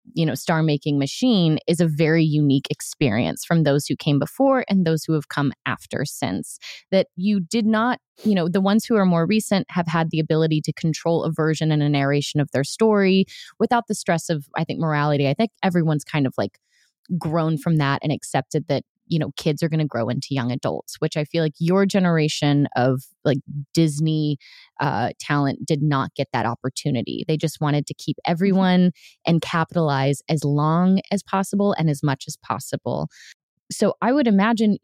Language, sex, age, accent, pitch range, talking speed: English, female, 20-39, American, 150-190 Hz, 195 wpm